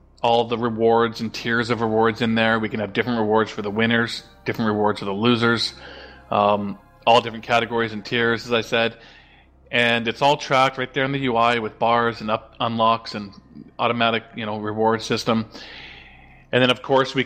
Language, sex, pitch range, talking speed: English, male, 110-130 Hz, 195 wpm